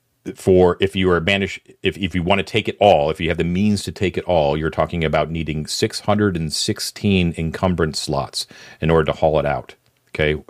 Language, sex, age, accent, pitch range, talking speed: English, male, 40-59, American, 75-90 Hz, 225 wpm